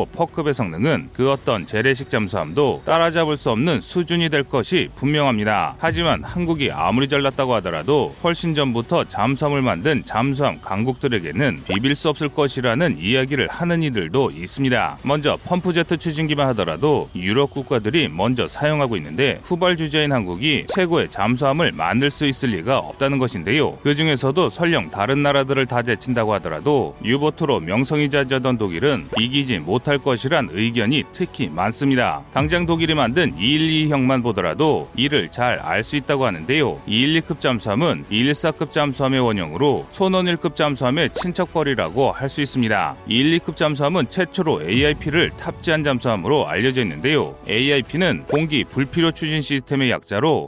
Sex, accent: male, native